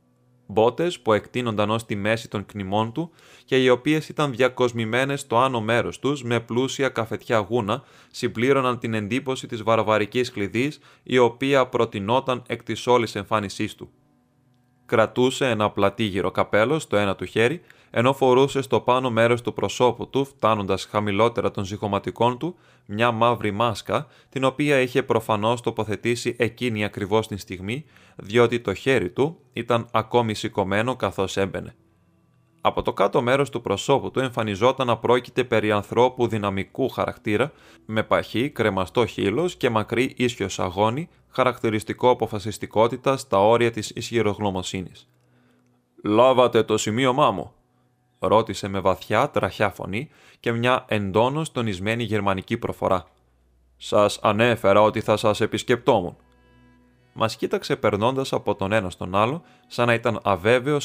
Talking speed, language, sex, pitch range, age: 135 wpm, Greek, male, 105-125 Hz, 20-39